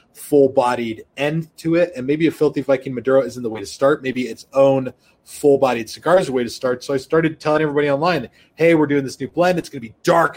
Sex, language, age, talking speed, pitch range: male, English, 30-49, 235 wpm, 130-165 Hz